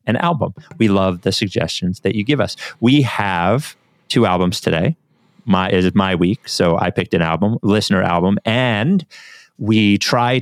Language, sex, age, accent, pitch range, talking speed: English, male, 30-49, American, 95-125 Hz, 165 wpm